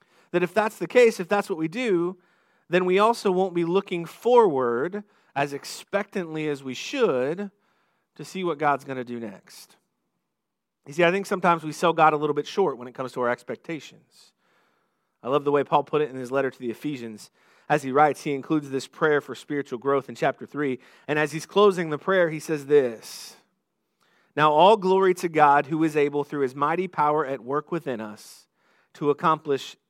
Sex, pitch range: male, 145-180 Hz